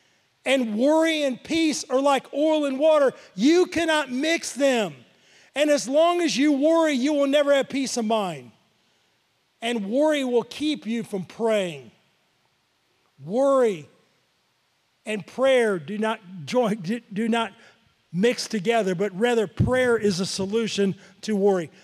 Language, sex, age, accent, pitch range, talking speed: English, male, 40-59, American, 205-275 Hz, 140 wpm